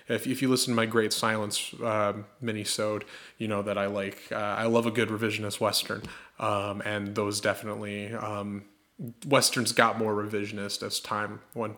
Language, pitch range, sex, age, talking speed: English, 105-125 Hz, male, 20-39, 175 wpm